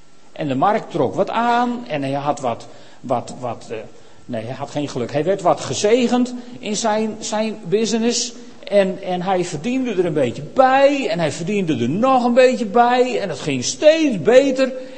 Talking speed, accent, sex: 190 wpm, Dutch, male